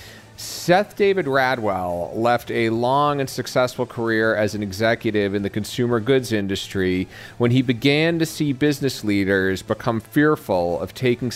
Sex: male